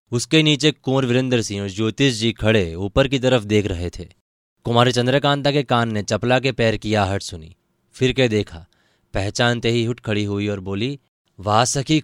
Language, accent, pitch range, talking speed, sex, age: Hindi, native, 105-130 Hz, 185 wpm, male, 20-39